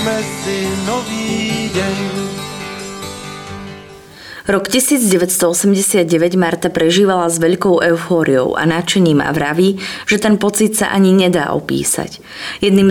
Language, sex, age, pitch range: Slovak, female, 20-39, 155-195 Hz